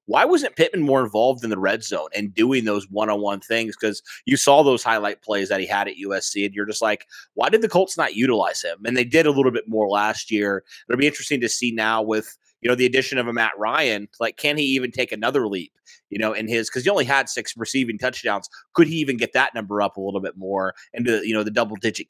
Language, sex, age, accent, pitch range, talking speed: English, male, 30-49, American, 105-125 Hz, 255 wpm